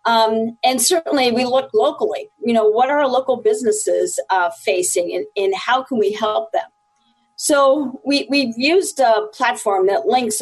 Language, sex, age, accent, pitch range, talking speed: English, female, 40-59, American, 215-335 Hz, 165 wpm